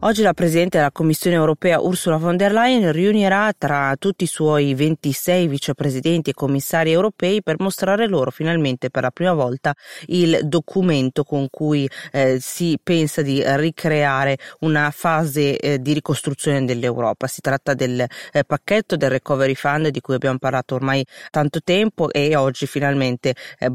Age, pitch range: 30-49, 135-160 Hz